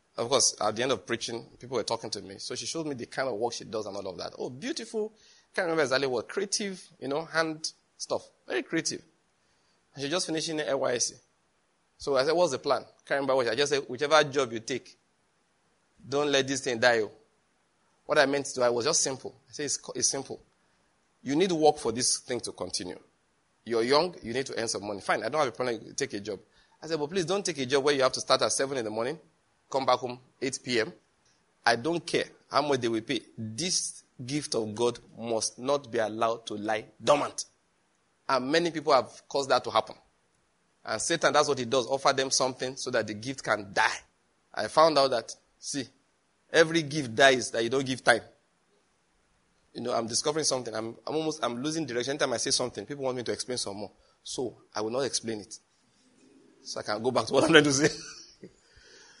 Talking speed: 230 wpm